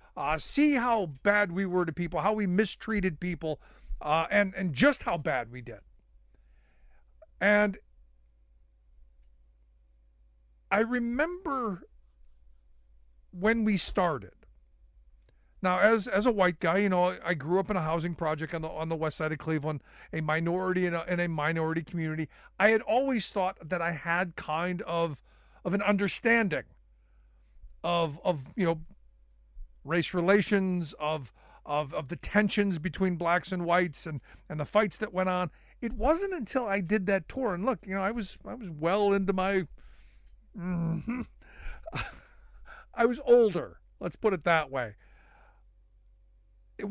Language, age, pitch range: English, 50-69, 140-205 Hz